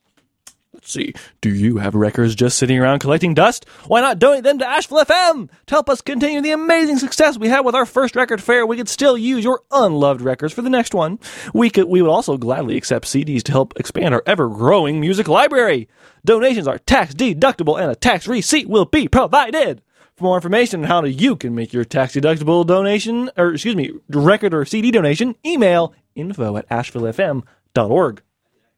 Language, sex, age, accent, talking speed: English, male, 20-39, American, 190 wpm